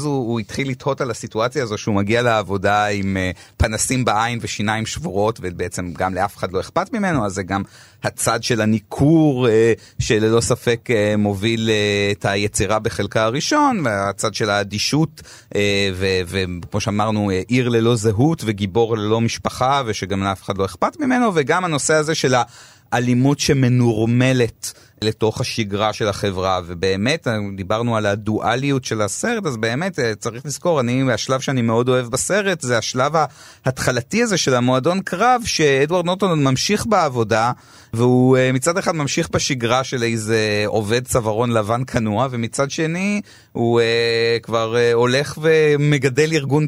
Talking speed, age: 150 wpm, 30-49